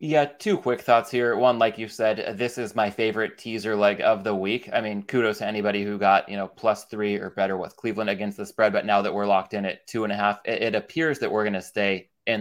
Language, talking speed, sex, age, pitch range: English, 265 wpm, male, 20-39, 105-120 Hz